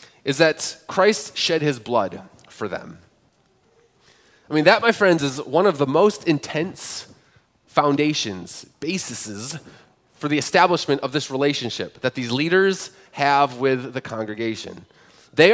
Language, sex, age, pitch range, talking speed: English, male, 30-49, 135-185 Hz, 135 wpm